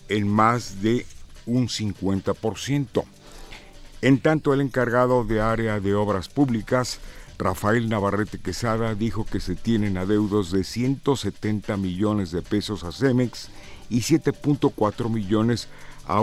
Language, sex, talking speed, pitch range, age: Spanish, male, 120 wpm, 100-125 Hz, 50-69